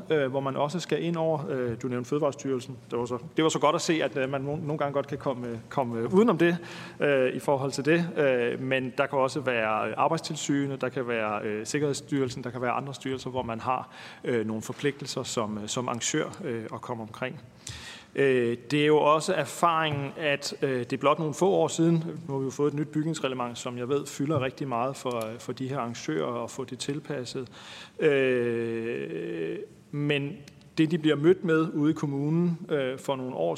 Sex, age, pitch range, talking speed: male, 40-59, 125-150 Hz, 190 wpm